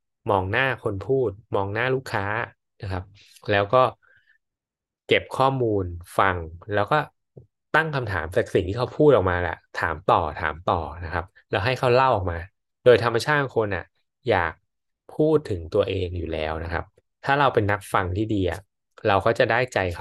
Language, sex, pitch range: Thai, male, 90-125 Hz